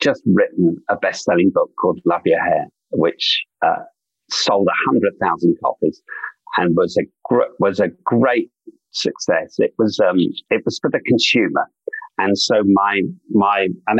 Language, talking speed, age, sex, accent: English, 160 wpm, 50-69, male, British